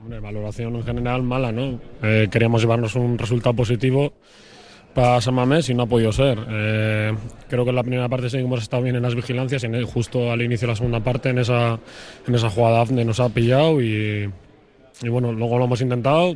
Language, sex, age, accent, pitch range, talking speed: Spanish, male, 20-39, Spanish, 115-125 Hz, 215 wpm